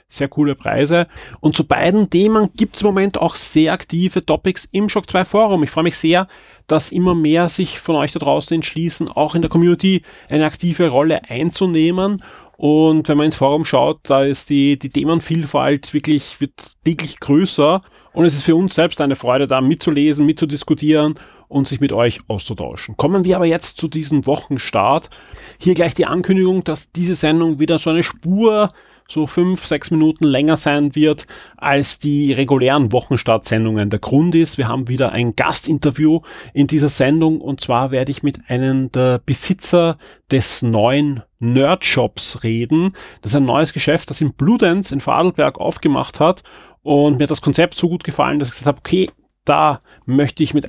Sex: male